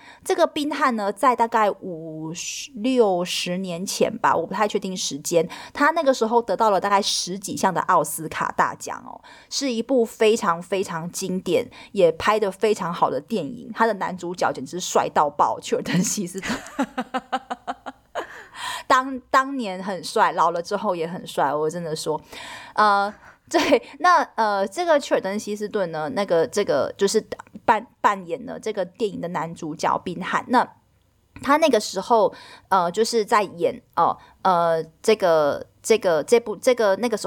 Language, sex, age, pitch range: Chinese, female, 30-49, 185-260 Hz